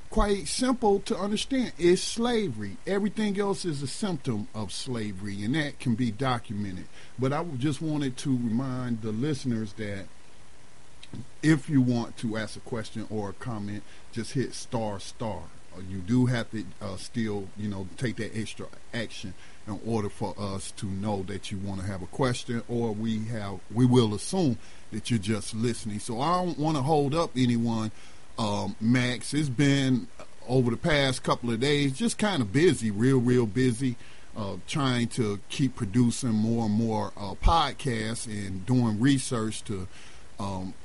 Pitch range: 110-145 Hz